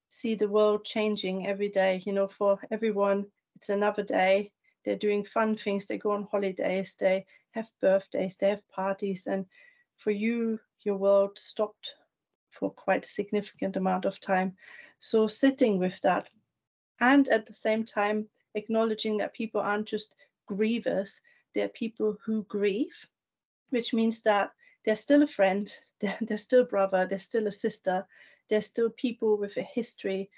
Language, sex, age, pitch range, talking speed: English, female, 30-49, 195-225 Hz, 160 wpm